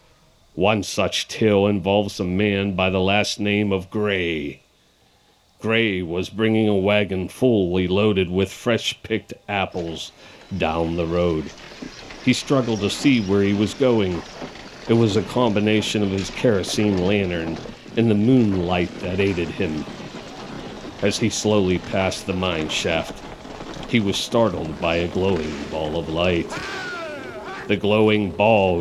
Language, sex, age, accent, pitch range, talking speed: English, male, 50-69, American, 90-110 Hz, 135 wpm